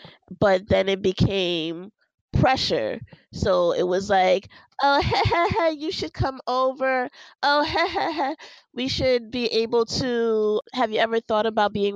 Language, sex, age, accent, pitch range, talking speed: English, female, 20-39, American, 160-205 Hz, 130 wpm